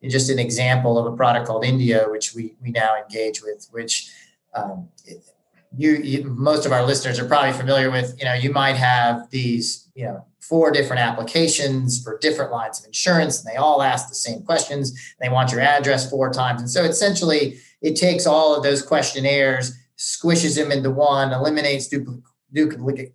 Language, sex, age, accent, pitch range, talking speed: English, male, 30-49, American, 120-145 Hz, 185 wpm